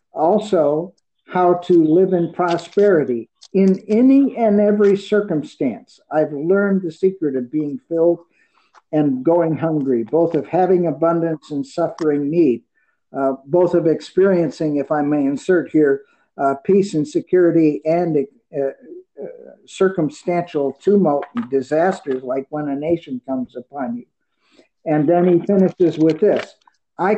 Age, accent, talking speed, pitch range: 50-69, American, 135 wpm, 150-190 Hz